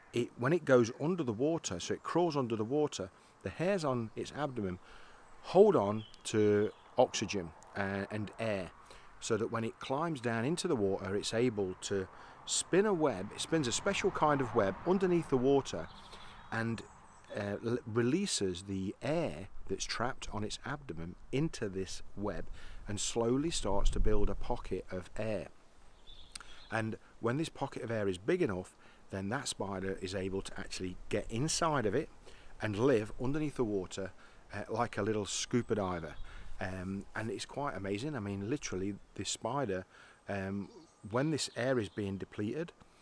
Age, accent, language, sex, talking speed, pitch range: 40-59, British, English, male, 165 wpm, 100-130 Hz